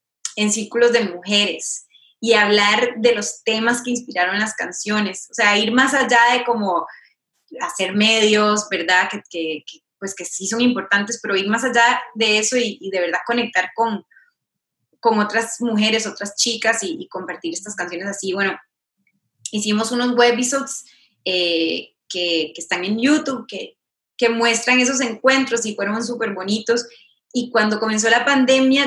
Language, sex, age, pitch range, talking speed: Spanish, female, 20-39, 190-235 Hz, 160 wpm